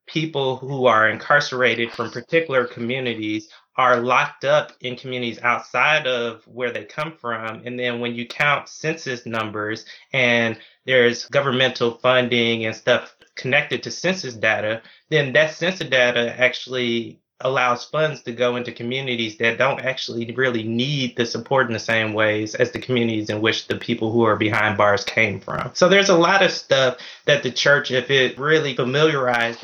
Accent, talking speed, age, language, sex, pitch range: American, 170 wpm, 20-39, English, male, 115-130 Hz